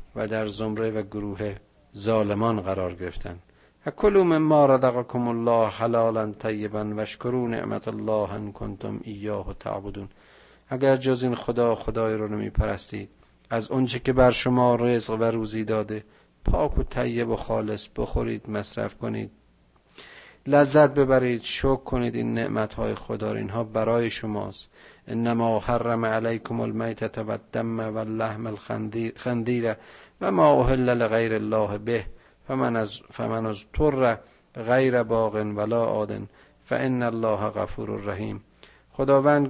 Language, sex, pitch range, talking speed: Persian, male, 105-125 Hz, 125 wpm